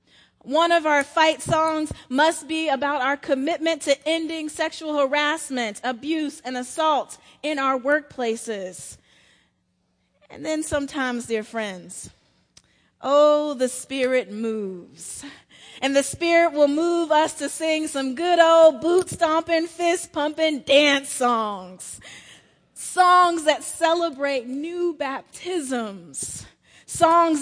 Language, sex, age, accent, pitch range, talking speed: English, female, 30-49, American, 255-315 Hz, 110 wpm